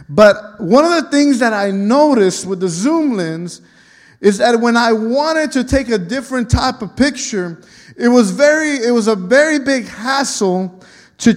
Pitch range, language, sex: 195-260 Hz, English, male